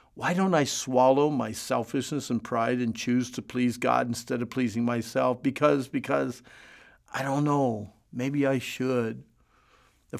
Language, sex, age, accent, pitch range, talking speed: English, male, 50-69, American, 125-165 Hz, 155 wpm